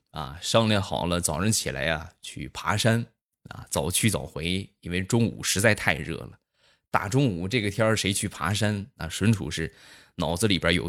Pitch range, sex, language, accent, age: 90-125 Hz, male, Chinese, native, 20-39